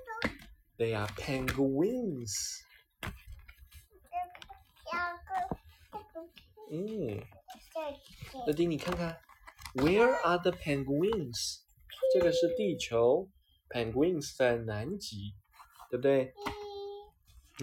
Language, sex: Chinese, male